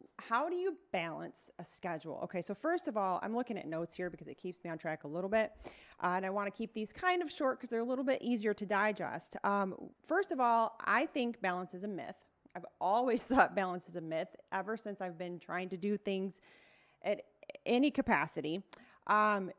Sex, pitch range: female, 185-230 Hz